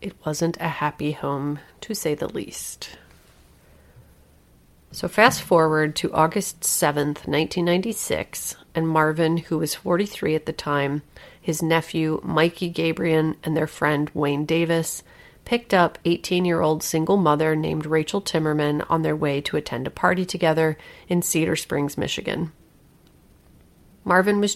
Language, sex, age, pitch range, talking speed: English, female, 30-49, 155-175 Hz, 135 wpm